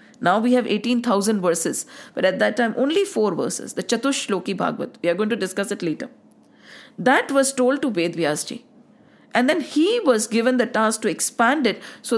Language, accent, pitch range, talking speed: English, Indian, 215-275 Hz, 195 wpm